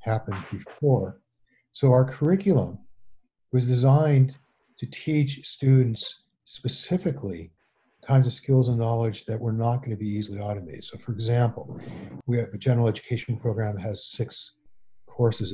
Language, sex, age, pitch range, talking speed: English, male, 50-69, 105-130 Hz, 145 wpm